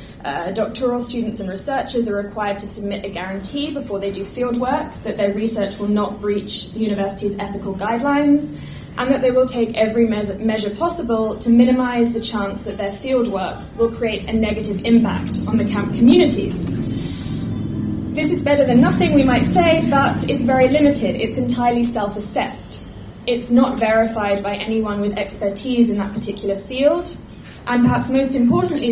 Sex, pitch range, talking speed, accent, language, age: female, 205-250 Hz, 165 wpm, British, English, 10-29